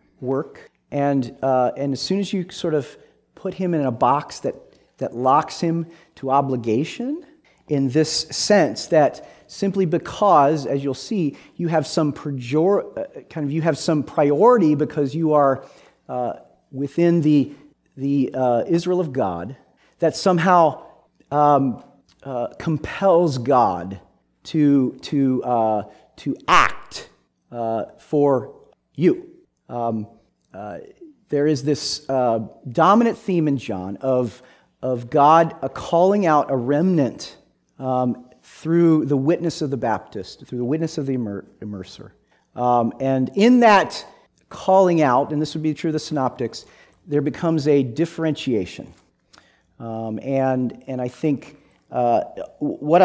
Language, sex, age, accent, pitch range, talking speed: English, male, 40-59, American, 125-165 Hz, 140 wpm